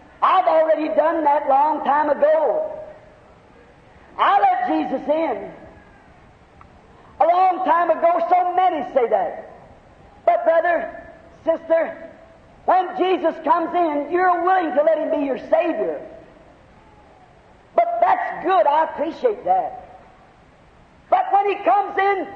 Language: English